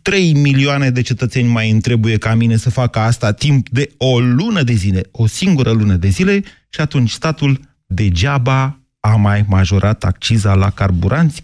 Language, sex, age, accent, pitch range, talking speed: Romanian, male, 30-49, native, 105-140 Hz, 170 wpm